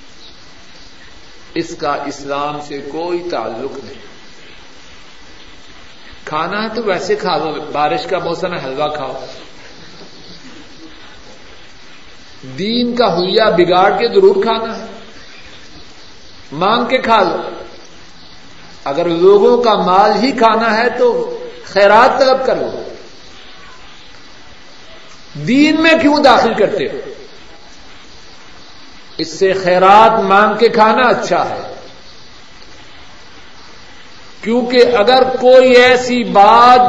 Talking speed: 100 wpm